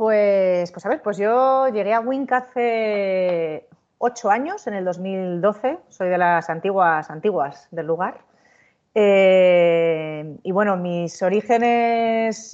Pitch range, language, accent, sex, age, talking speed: 180-220 Hz, Spanish, Spanish, female, 30-49, 130 wpm